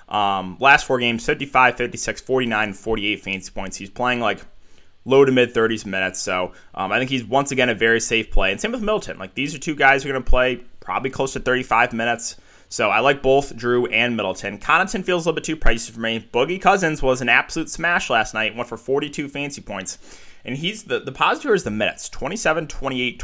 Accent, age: American, 20-39